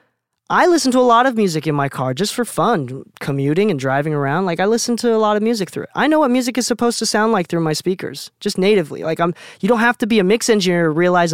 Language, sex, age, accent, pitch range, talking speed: English, male, 20-39, American, 145-205 Hz, 280 wpm